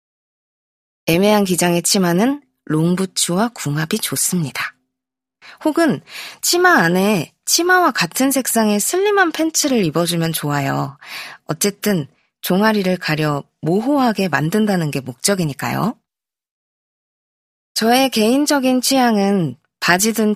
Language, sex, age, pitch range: Korean, female, 20-39, 165-245 Hz